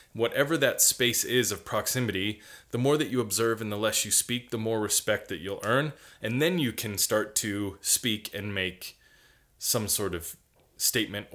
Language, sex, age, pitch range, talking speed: English, male, 20-39, 100-125 Hz, 185 wpm